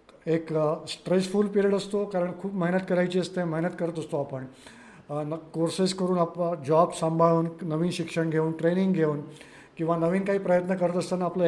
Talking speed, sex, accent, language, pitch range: 175 wpm, male, native, Marathi, 160-200 Hz